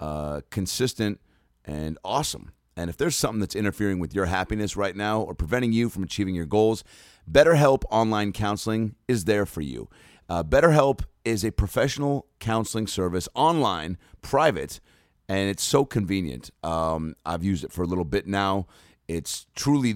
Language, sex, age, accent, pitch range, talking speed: English, male, 30-49, American, 85-115 Hz, 160 wpm